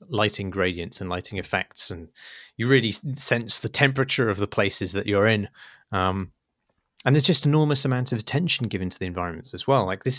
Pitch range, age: 100-125 Hz, 30-49